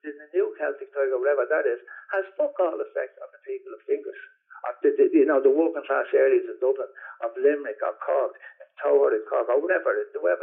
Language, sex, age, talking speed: English, male, 60-79, 180 wpm